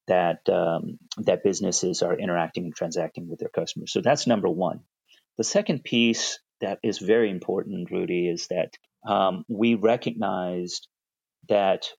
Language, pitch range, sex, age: English, 95-115 Hz, male, 30-49